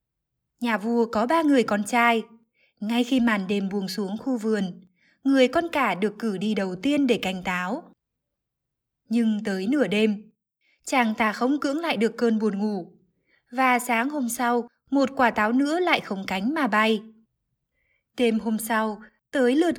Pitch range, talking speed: 210-255 Hz, 175 wpm